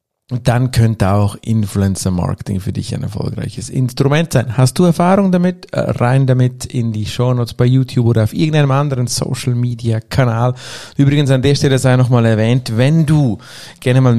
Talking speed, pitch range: 165 wpm, 105-135 Hz